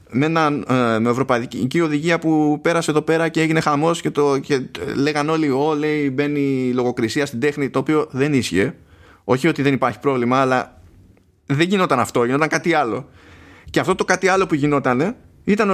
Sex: male